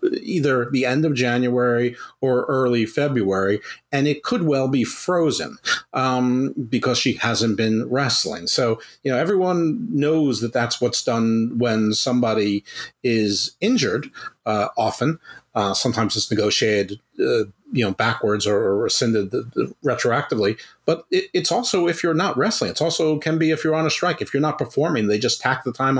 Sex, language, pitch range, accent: male, English, 115-145 Hz, American